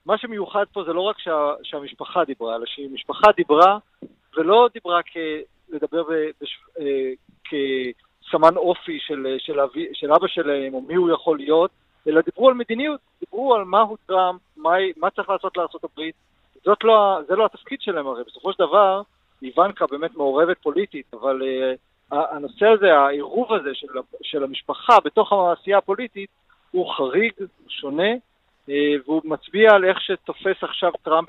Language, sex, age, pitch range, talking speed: Hebrew, male, 50-69, 155-220 Hz, 150 wpm